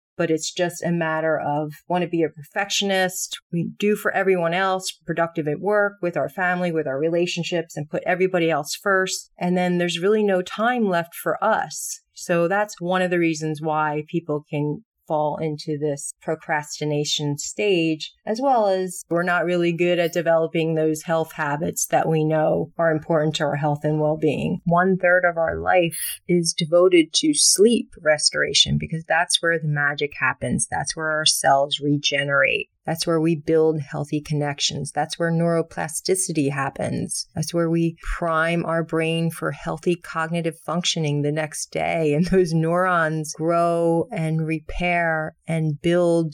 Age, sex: 30-49, female